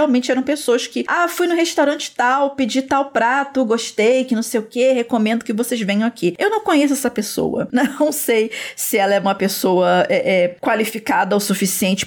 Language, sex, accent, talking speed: Portuguese, female, Brazilian, 190 wpm